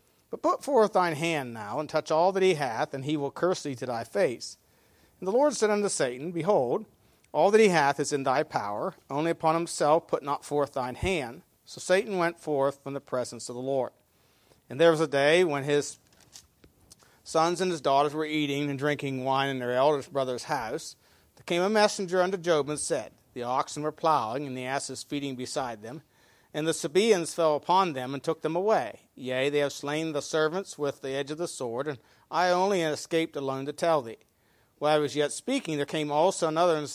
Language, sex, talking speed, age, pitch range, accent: English, male, 215 wpm, 40-59, 140-175 Hz, American